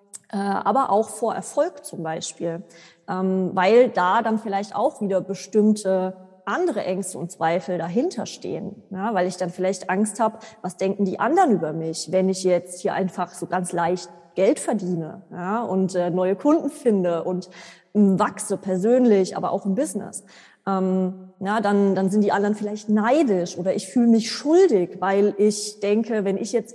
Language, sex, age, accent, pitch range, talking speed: German, female, 20-39, German, 185-225 Hz, 155 wpm